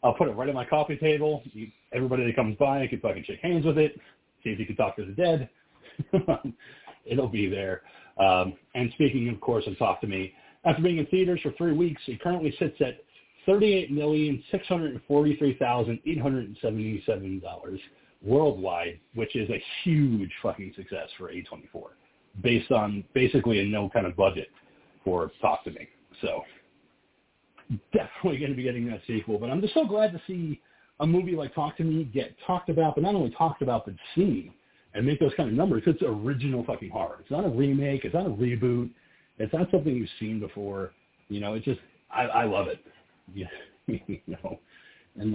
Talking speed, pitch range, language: 185 wpm, 105-155 Hz, English